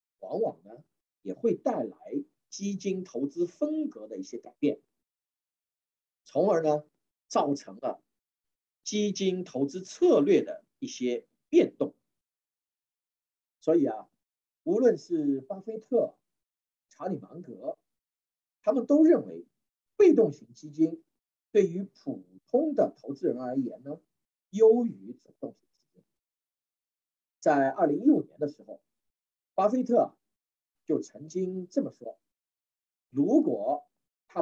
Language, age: Chinese, 50-69